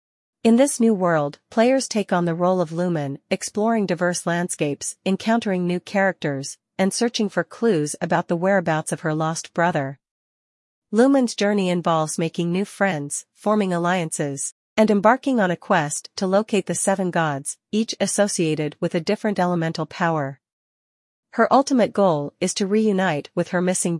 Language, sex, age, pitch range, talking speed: Vietnamese, female, 40-59, 160-205 Hz, 155 wpm